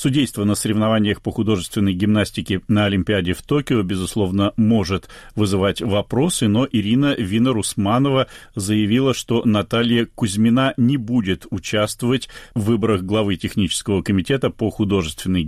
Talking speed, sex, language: 120 wpm, male, Russian